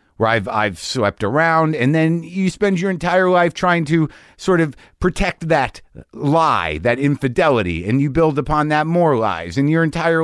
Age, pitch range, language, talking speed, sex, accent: 50-69, 110-160 Hz, English, 175 wpm, male, American